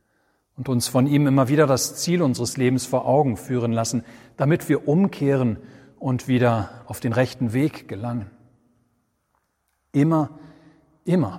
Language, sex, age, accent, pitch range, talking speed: German, male, 40-59, German, 120-140 Hz, 135 wpm